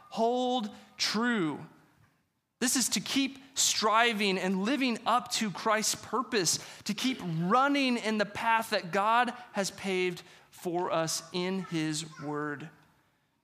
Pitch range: 180-230 Hz